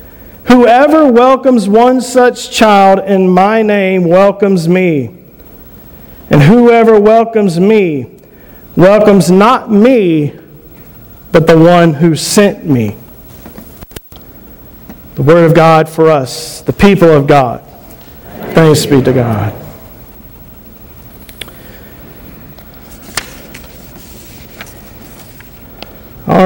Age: 50-69